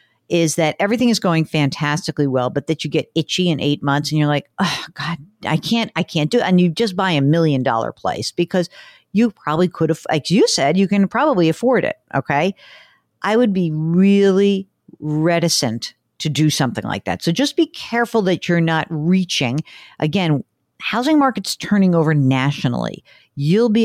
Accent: American